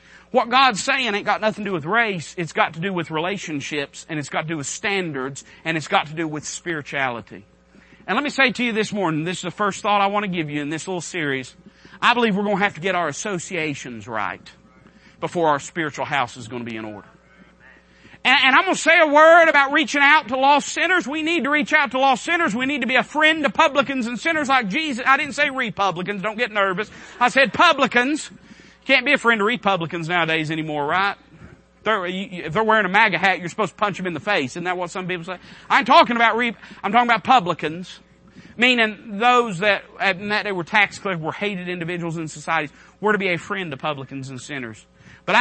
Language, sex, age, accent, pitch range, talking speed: English, male, 40-59, American, 165-245 Hz, 230 wpm